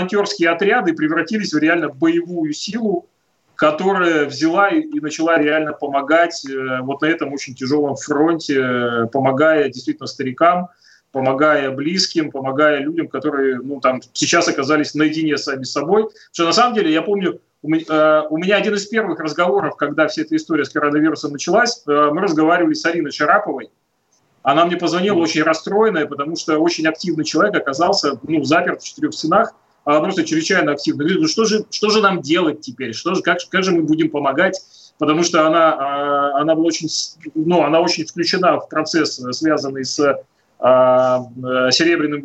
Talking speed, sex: 160 wpm, male